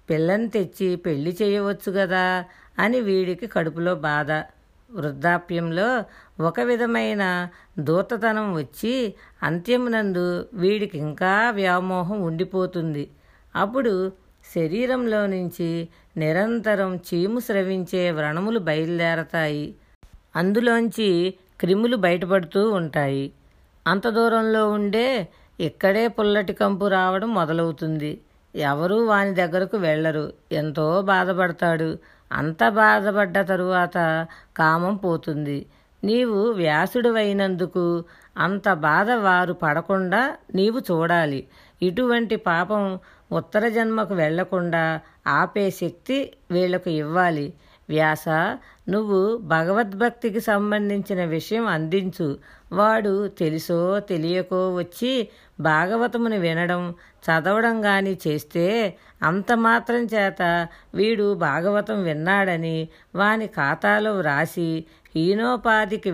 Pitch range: 165-210 Hz